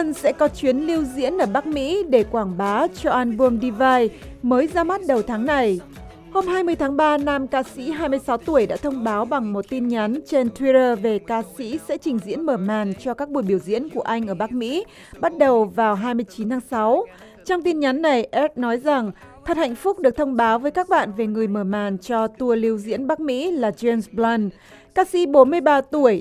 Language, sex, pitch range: Vietnamese, female, 225-300 Hz